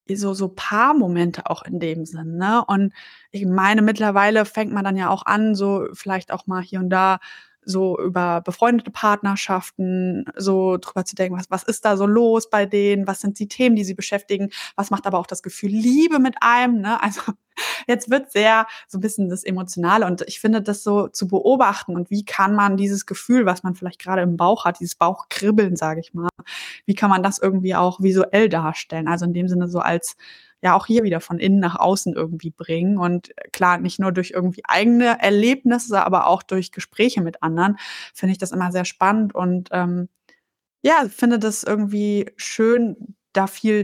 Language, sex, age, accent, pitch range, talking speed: German, female, 20-39, German, 185-215 Hz, 200 wpm